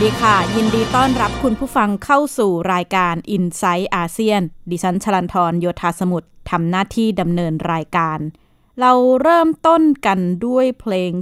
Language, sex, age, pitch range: Thai, female, 20-39, 180-230 Hz